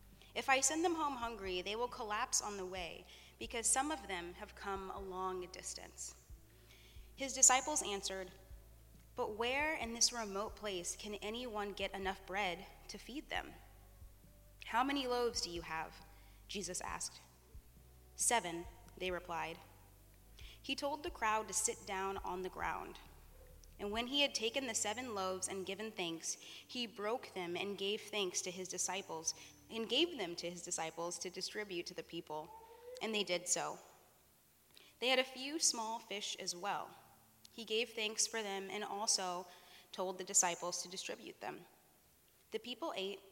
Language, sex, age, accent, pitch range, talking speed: English, female, 20-39, American, 175-230 Hz, 165 wpm